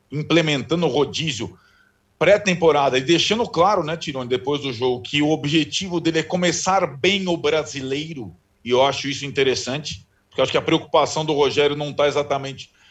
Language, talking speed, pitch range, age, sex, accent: Portuguese, 170 wpm, 135-165 Hz, 40-59, male, Brazilian